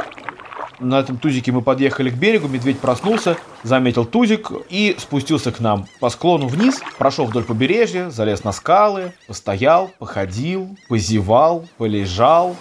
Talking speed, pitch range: 135 wpm, 120-175 Hz